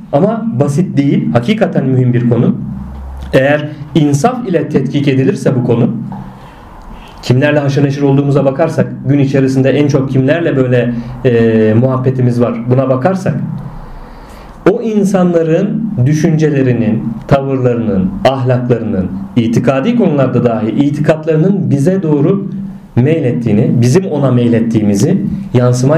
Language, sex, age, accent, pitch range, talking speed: Turkish, male, 40-59, native, 120-155 Hz, 105 wpm